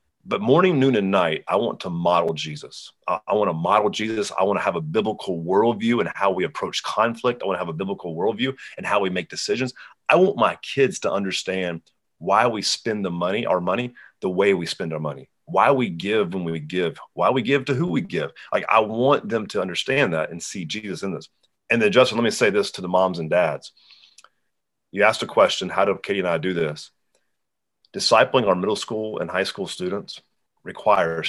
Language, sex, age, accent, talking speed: English, male, 30-49, American, 220 wpm